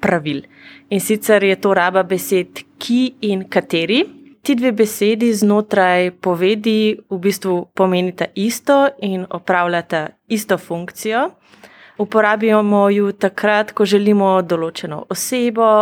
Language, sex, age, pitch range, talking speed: German, female, 30-49, 180-225 Hz, 110 wpm